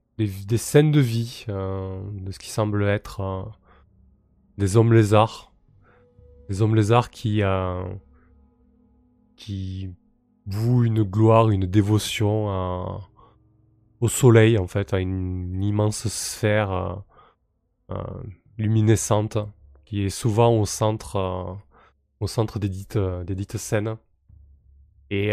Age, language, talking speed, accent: 20-39, French, 125 wpm, French